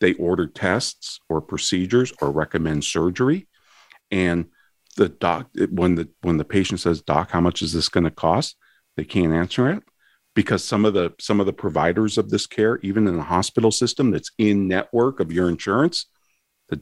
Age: 40-59